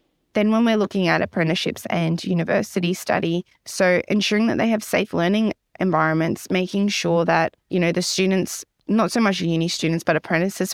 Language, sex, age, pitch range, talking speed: English, female, 20-39, 170-210 Hz, 180 wpm